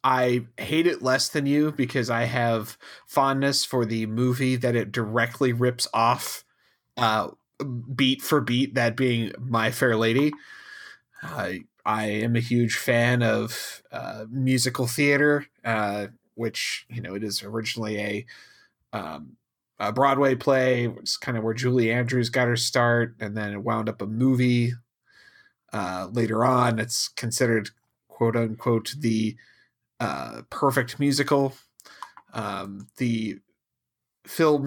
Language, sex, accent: English, male, American